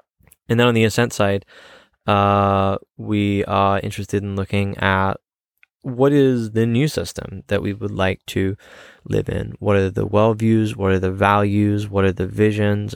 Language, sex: English, male